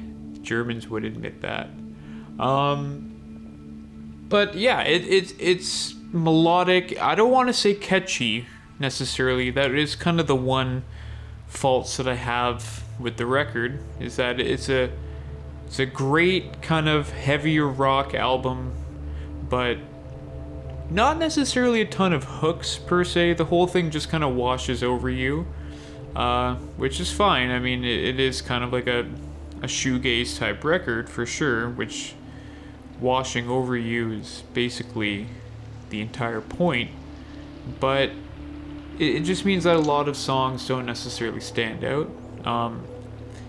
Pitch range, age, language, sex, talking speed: 110-140 Hz, 20-39, English, male, 140 wpm